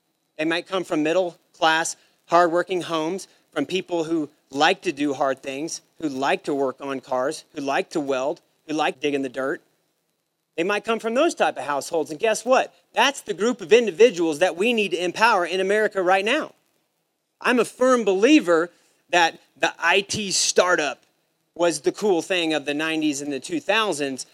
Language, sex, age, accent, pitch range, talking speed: English, male, 40-59, American, 160-215 Hz, 180 wpm